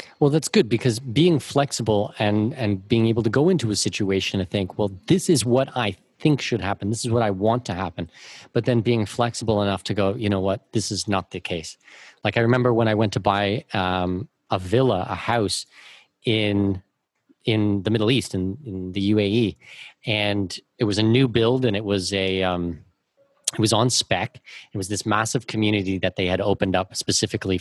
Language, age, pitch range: English, 30-49, 100-125 Hz